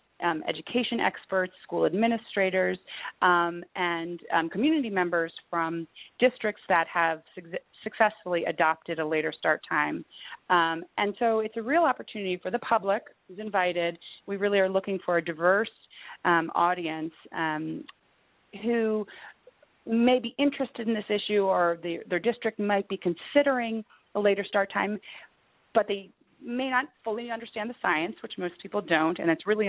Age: 30-49